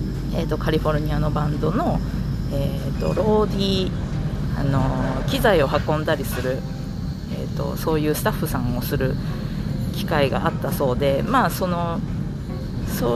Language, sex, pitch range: Japanese, female, 145-175 Hz